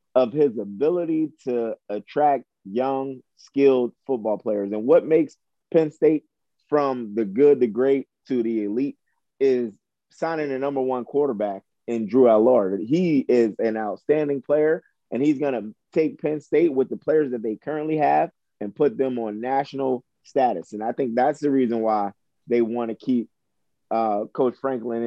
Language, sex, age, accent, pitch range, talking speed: English, male, 30-49, American, 115-140 Hz, 165 wpm